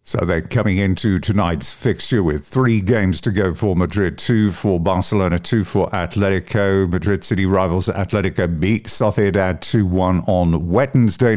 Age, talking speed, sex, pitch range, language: 50-69, 150 wpm, male, 90-110 Hz, English